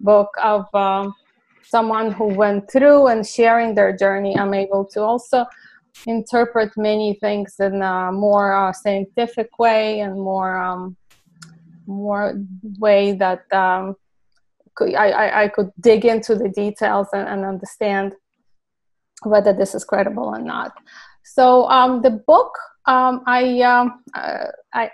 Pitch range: 205-245 Hz